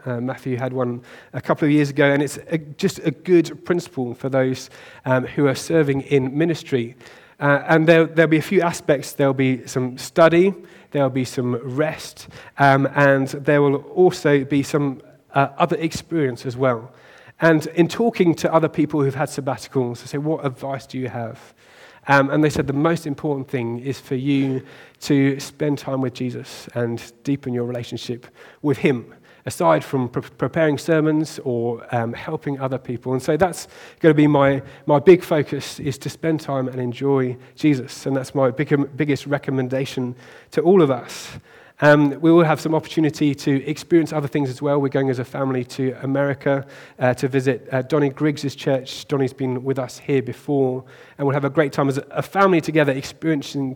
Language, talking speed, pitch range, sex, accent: English, 190 wpm, 130-155 Hz, male, British